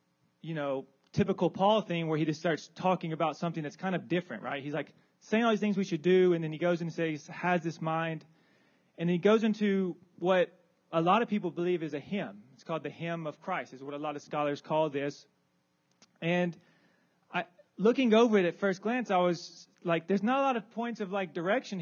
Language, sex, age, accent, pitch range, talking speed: English, male, 30-49, American, 160-190 Hz, 225 wpm